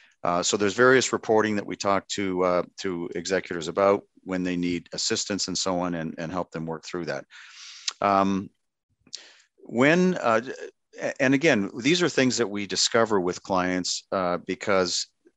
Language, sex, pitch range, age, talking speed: English, male, 90-100 Hz, 50-69, 165 wpm